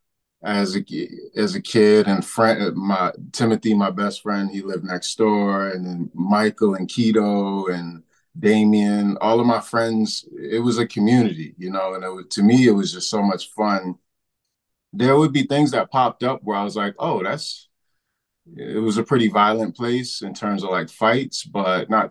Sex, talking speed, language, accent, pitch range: male, 180 wpm, English, American, 95-110 Hz